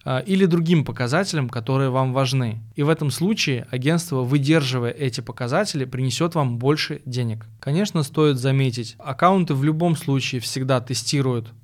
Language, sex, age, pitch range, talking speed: Russian, male, 20-39, 125-150 Hz, 140 wpm